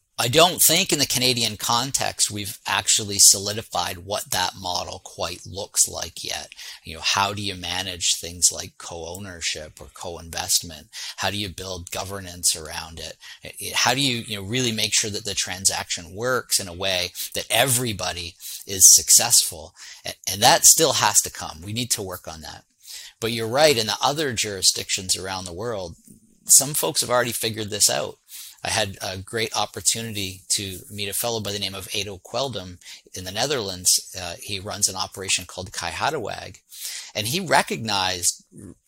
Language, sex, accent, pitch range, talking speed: English, male, American, 95-120 Hz, 175 wpm